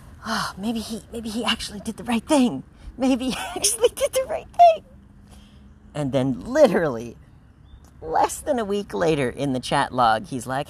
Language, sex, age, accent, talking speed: English, female, 40-59, American, 175 wpm